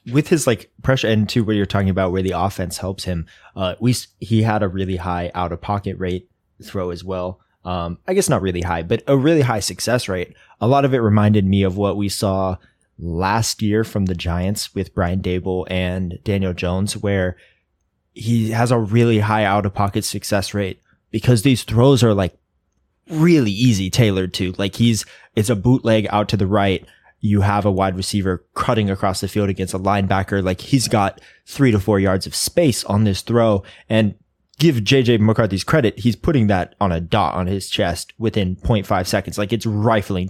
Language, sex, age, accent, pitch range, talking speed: English, male, 20-39, American, 95-110 Hz, 195 wpm